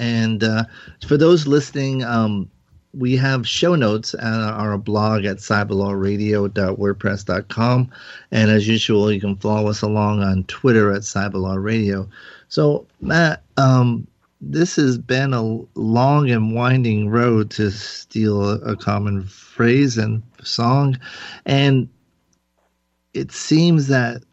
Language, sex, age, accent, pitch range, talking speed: English, male, 40-59, American, 105-125 Hz, 125 wpm